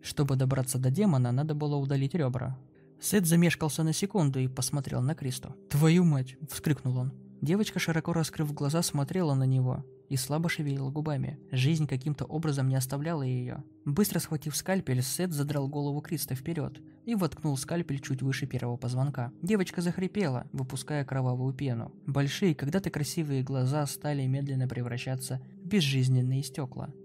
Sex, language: male, Russian